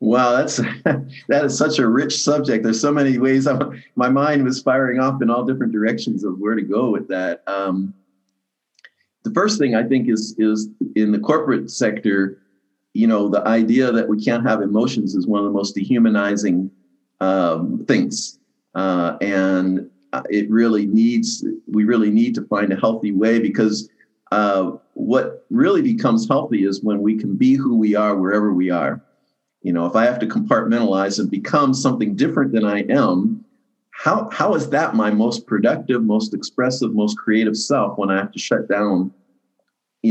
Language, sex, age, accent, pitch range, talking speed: English, male, 50-69, American, 100-125 Hz, 180 wpm